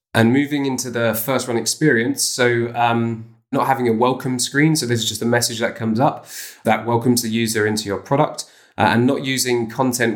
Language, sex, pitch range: English, male, 110-125 Hz